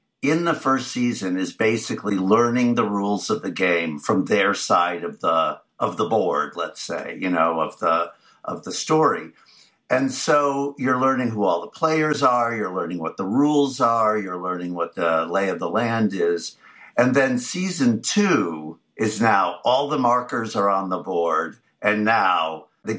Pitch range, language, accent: 90-125 Hz, English, American